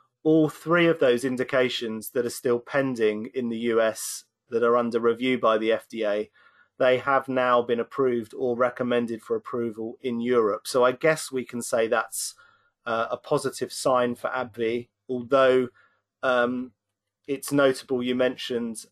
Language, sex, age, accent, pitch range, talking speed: English, male, 30-49, British, 115-130 Hz, 155 wpm